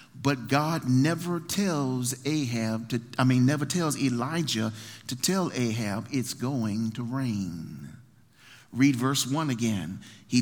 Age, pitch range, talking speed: 40-59, 120-185 Hz, 130 wpm